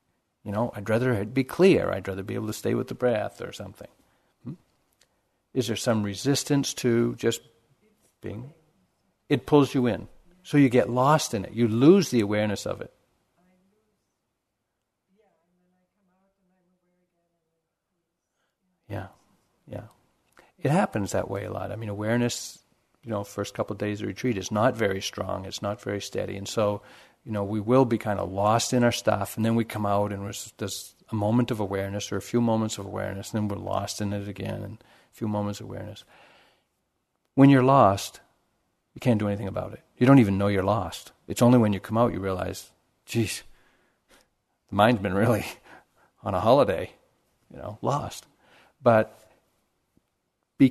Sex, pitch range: male, 100-130 Hz